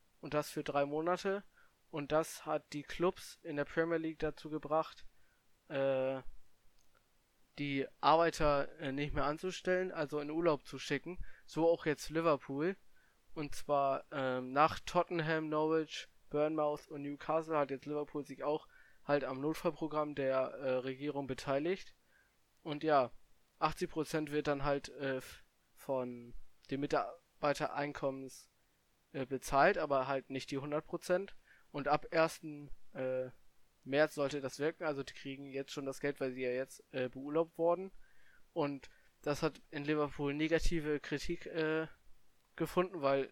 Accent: German